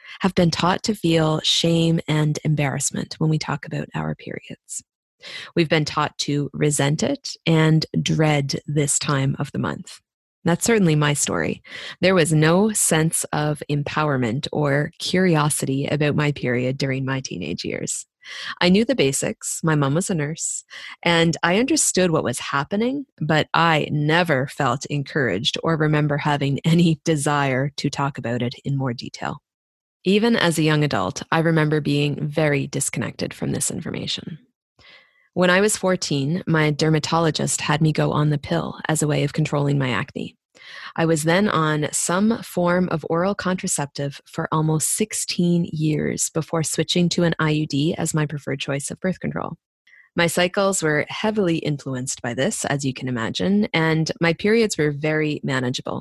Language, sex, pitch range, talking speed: English, female, 145-170 Hz, 165 wpm